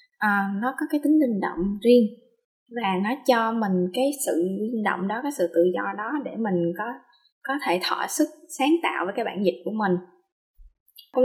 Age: 20-39